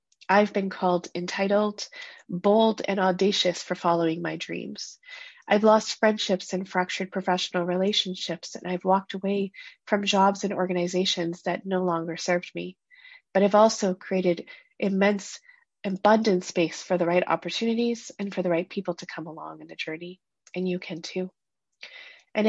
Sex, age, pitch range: female, 30-49, 180-210 Hz